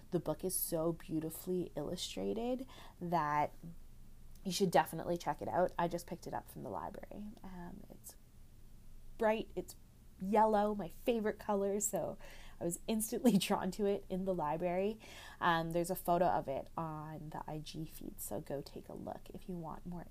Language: English